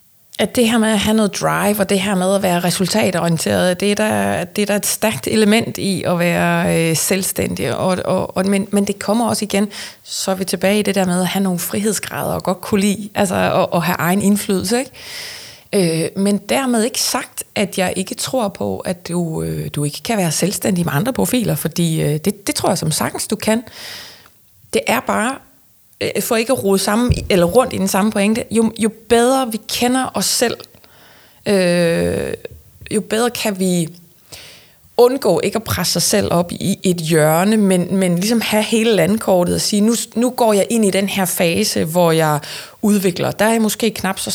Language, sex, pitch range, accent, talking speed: Danish, female, 170-215 Hz, native, 205 wpm